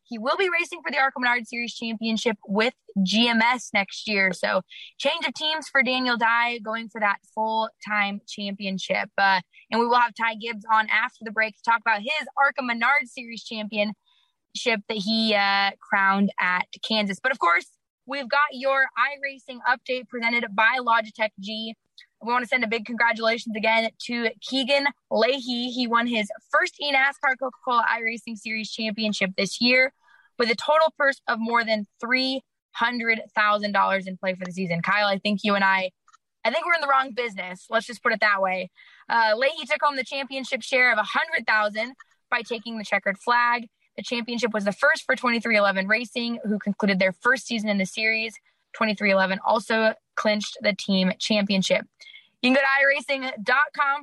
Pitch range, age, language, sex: 210-260 Hz, 20-39, English, female